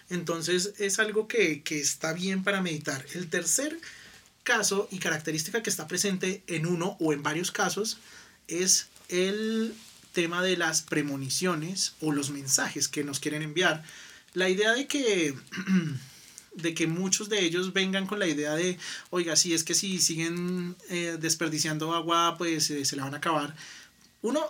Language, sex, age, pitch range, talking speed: Spanish, male, 30-49, 155-185 Hz, 160 wpm